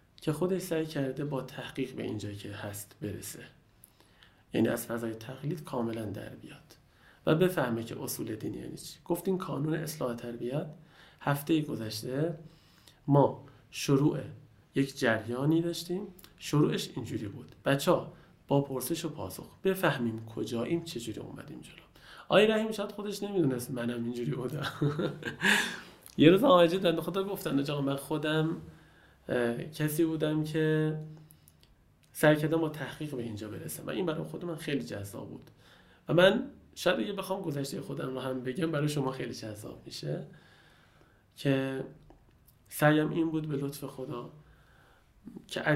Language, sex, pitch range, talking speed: Persian, male, 125-160 Hz, 140 wpm